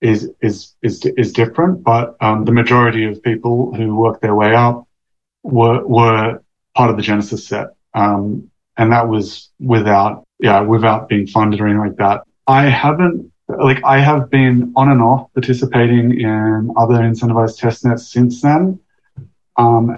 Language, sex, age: English, male, 30-49